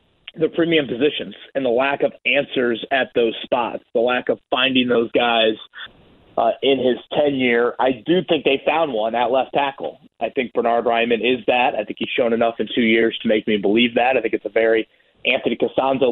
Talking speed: 210 wpm